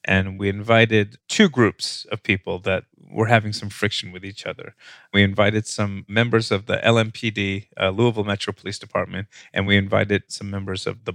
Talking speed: 185 wpm